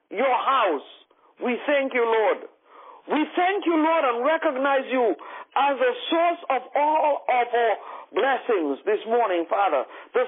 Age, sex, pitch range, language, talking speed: 50-69, male, 235-375 Hz, English, 145 wpm